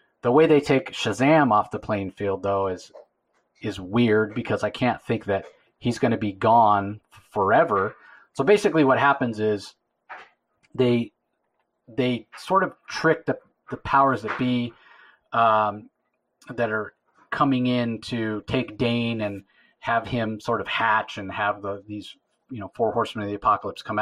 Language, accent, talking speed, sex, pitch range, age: English, American, 160 wpm, male, 105-130 Hz, 30-49